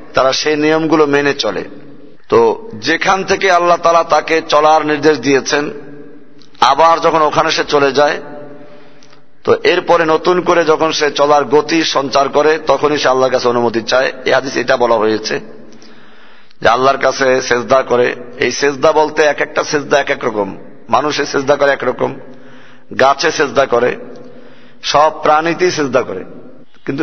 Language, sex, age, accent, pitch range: Bengali, male, 50-69, native, 140-165 Hz